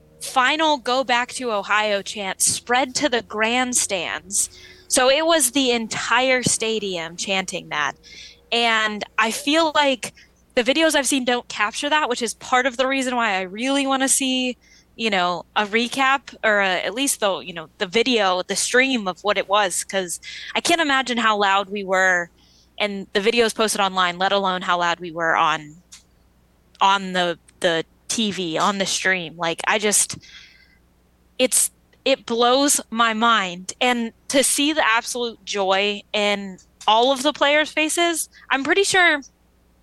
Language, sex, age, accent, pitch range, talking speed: English, female, 20-39, American, 195-255 Hz, 165 wpm